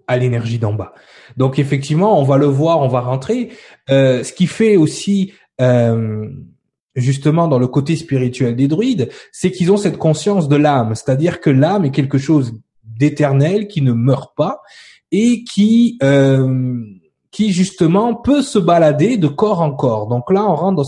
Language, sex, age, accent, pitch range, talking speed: French, male, 20-39, French, 125-175 Hz, 175 wpm